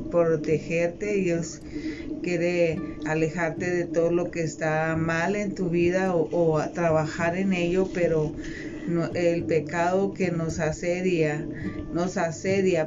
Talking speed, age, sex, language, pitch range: 120 wpm, 40-59, female, Spanish, 160-190 Hz